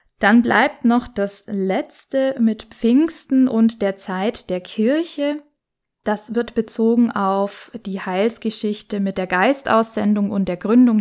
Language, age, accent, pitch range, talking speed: German, 10-29, German, 200-235 Hz, 130 wpm